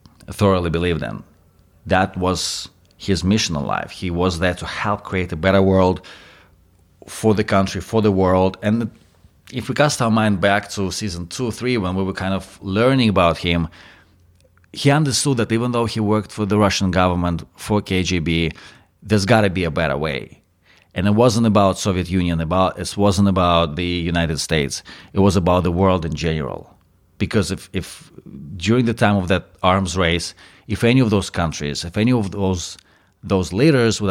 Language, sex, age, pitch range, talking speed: English, male, 30-49, 85-110 Hz, 185 wpm